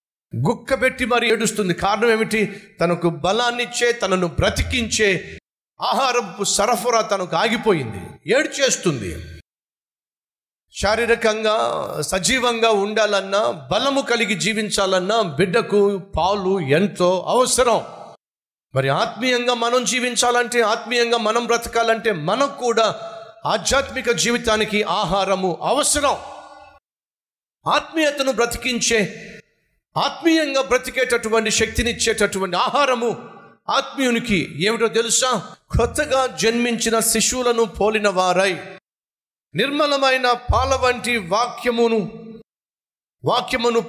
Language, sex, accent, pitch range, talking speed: Telugu, male, native, 200-245 Hz, 70 wpm